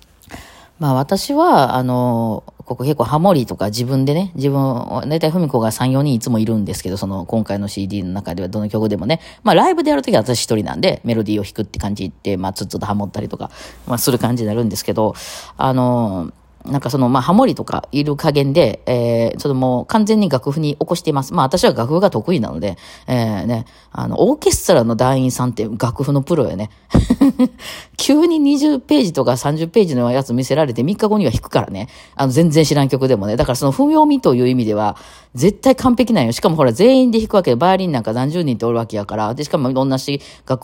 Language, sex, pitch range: Japanese, female, 115-170 Hz